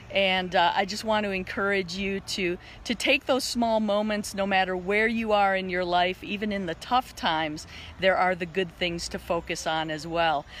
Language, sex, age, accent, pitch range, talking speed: English, female, 40-59, American, 175-230 Hz, 210 wpm